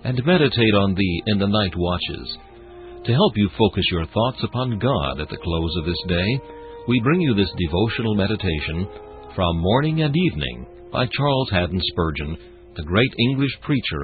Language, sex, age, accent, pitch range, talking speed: English, male, 60-79, American, 85-115 Hz, 170 wpm